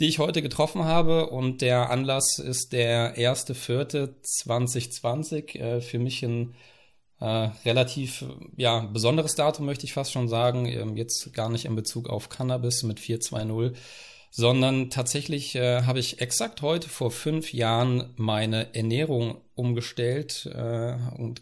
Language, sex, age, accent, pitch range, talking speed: German, male, 40-59, German, 115-130 Hz, 125 wpm